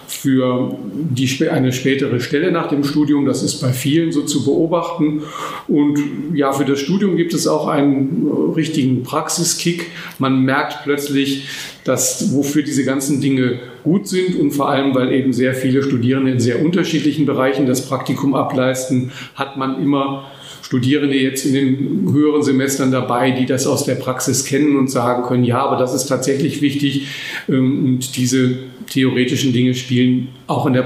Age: 40-59